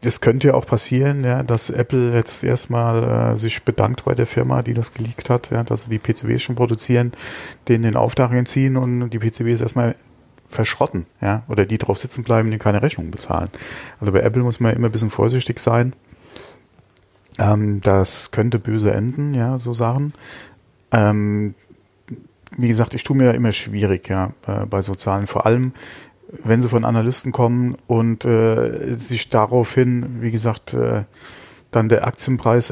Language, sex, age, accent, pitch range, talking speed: German, male, 40-59, German, 105-120 Hz, 175 wpm